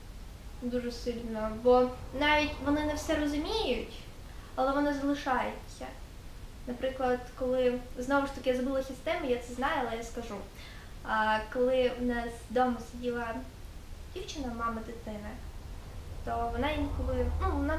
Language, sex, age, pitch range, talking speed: Ukrainian, female, 10-29, 240-280 Hz, 130 wpm